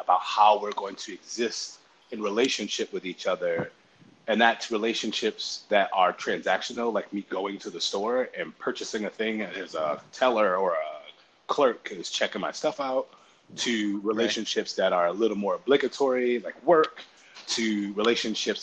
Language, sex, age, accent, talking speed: English, male, 30-49, American, 160 wpm